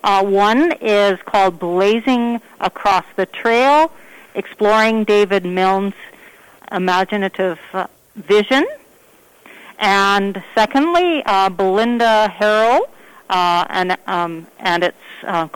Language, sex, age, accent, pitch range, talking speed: English, female, 40-59, American, 180-215 Hz, 95 wpm